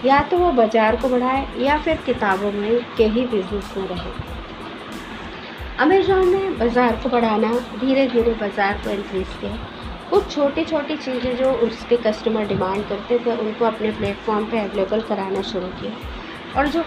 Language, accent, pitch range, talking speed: Hindi, native, 210-270 Hz, 160 wpm